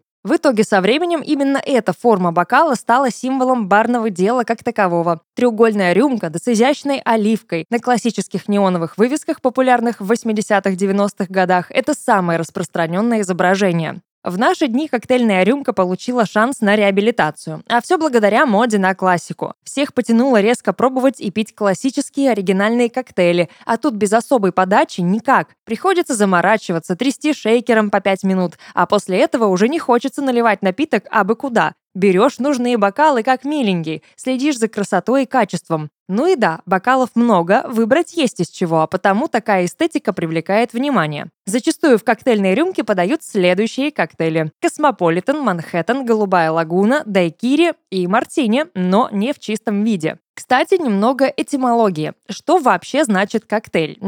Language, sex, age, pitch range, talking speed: Russian, female, 20-39, 190-260 Hz, 145 wpm